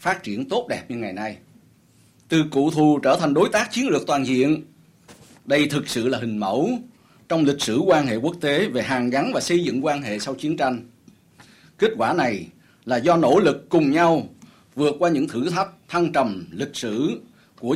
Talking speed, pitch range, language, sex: 205 wpm, 135-180 Hz, Vietnamese, male